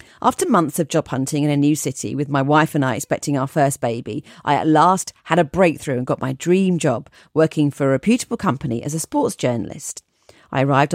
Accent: British